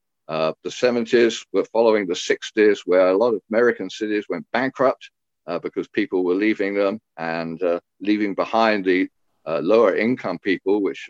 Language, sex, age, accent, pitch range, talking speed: English, male, 50-69, British, 90-135 Hz, 170 wpm